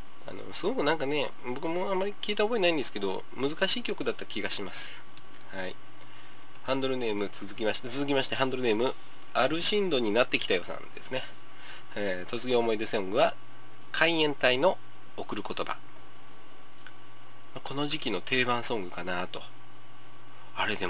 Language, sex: Japanese, male